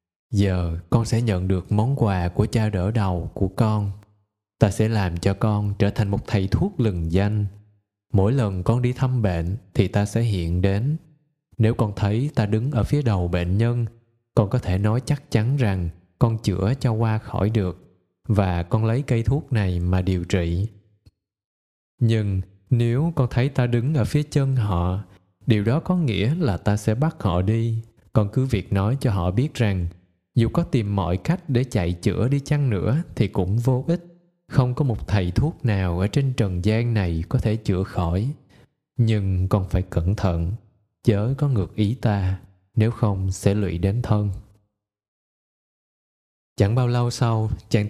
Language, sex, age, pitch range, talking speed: Vietnamese, male, 20-39, 95-125 Hz, 185 wpm